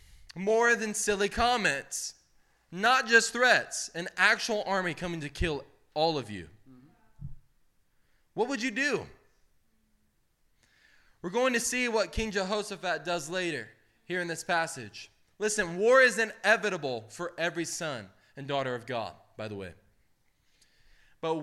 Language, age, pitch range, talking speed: English, 20-39, 145-205 Hz, 135 wpm